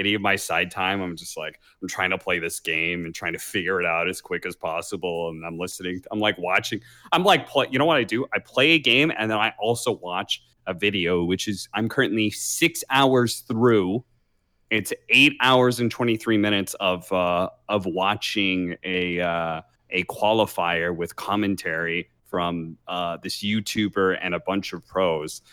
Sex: male